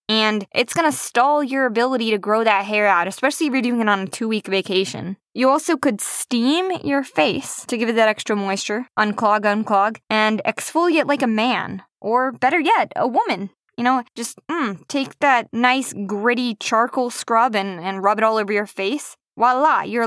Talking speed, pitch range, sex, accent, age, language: 195 wpm, 200-240 Hz, female, American, 20-39, English